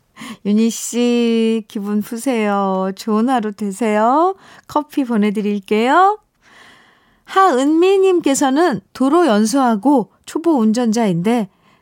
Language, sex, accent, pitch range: Korean, female, native, 205-285 Hz